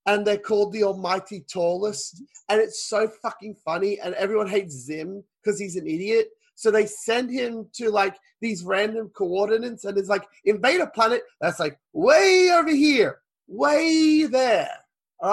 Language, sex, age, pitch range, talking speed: English, male, 20-39, 185-230 Hz, 165 wpm